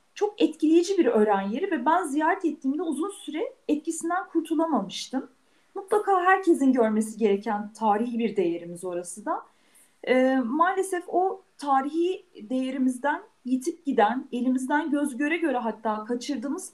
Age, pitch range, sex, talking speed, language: 40-59, 255-340 Hz, female, 120 wpm, Turkish